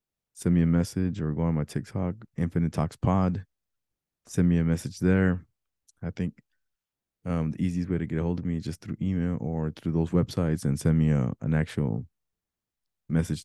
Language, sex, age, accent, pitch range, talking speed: English, male, 20-39, American, 75-90 Hz, 195 wpm